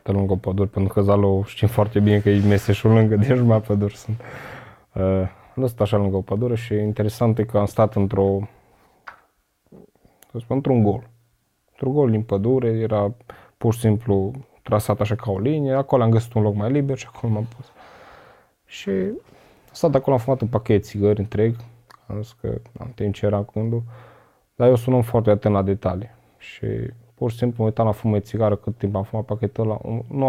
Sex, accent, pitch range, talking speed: male, native, 100-120 Hz, 195 wpm